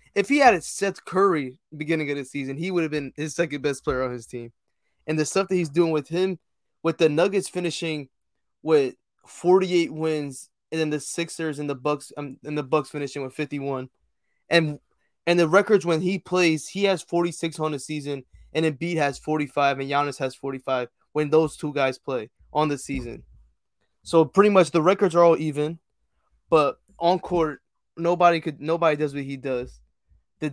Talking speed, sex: 200 wpm, male